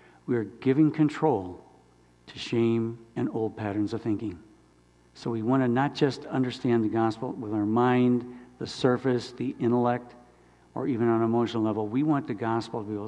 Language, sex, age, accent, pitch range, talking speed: English, male, 60-79, American, 105-130 Hz, 185 wpm